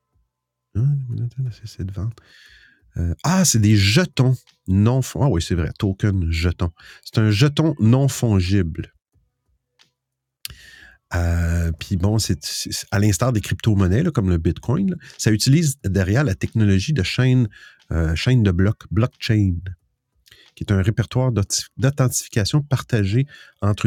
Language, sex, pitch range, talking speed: French, male, 95-130 Hz, 125 wpm